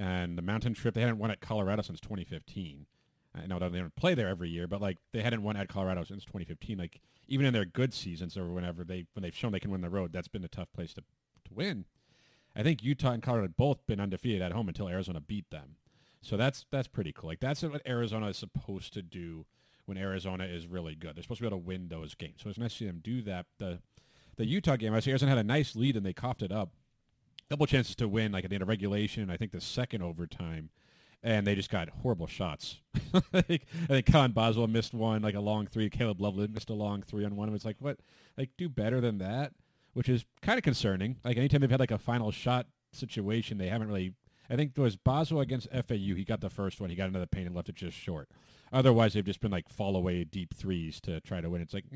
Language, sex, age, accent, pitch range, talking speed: English, male, 30-49, American, 95-125 Hz, 255 wpm